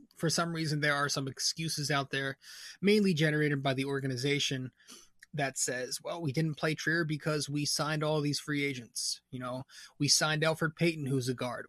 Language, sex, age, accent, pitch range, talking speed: English, male, 20-39, American, 130-155 Hz, 190 wpm